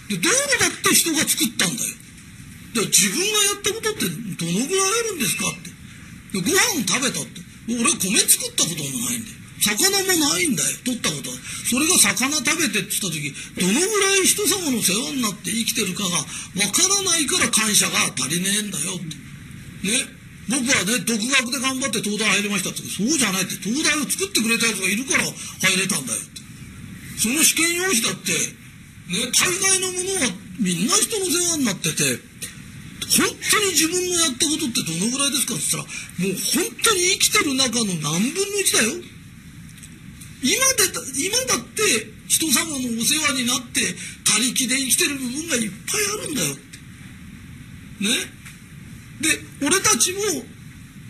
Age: 40-59